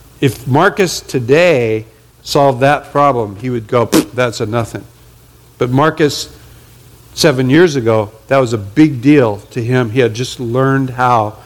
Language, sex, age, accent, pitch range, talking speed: English, male, 60-79, American, 115-145 Hz, 150 wpm